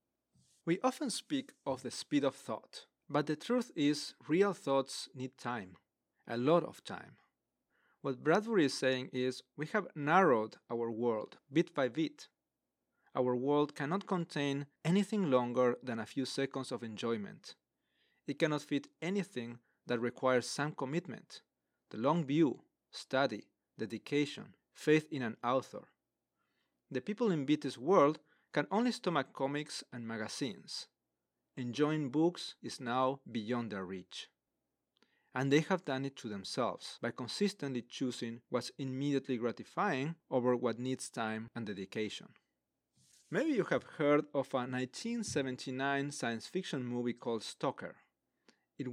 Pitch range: 120-155 Hz